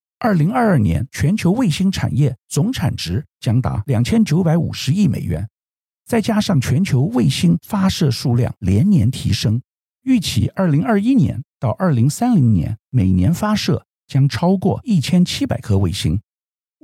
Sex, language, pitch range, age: male, Chinese, 110-175 Hz, 50-69